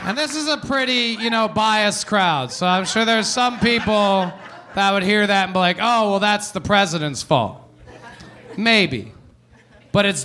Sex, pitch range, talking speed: male, 155-215 Hz, 180 wpm